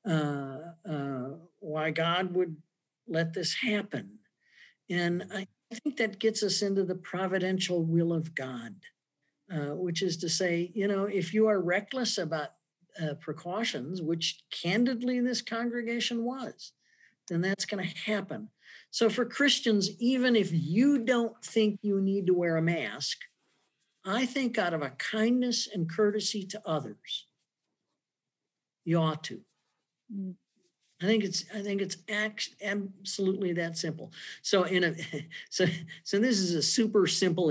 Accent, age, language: American, 60-79, English